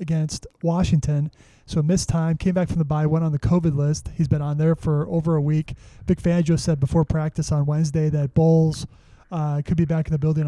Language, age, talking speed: English, 20-39, 225 wpm